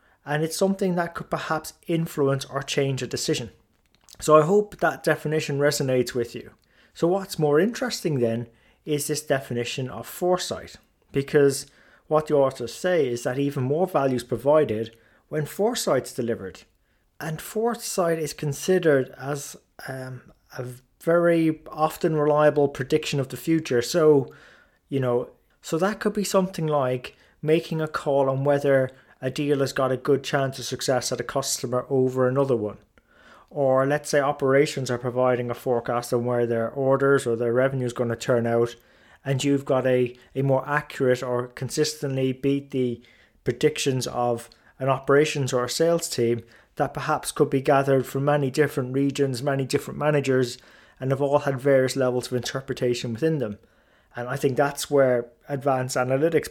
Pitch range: 125-150 Hz